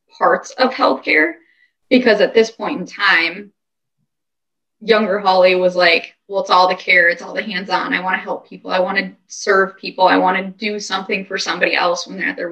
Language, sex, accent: English, female, American